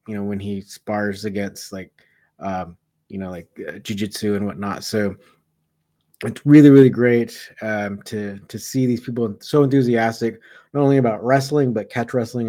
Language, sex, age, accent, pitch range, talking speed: English, male, 20-39, American, 105-130 Hz, 175 wpm